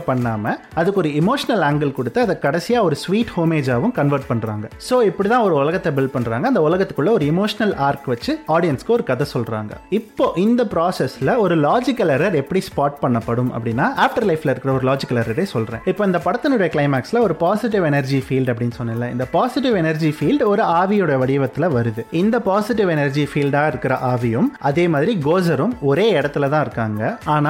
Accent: native